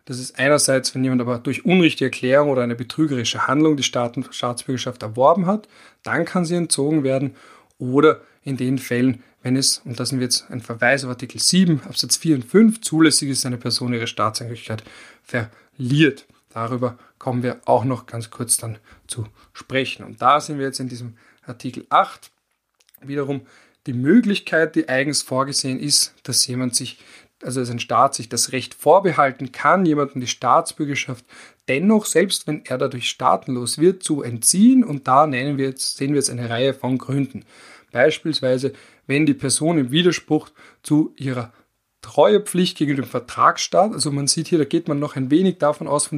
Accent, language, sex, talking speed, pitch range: German, German, male, 180 wpm, 125-150 Hz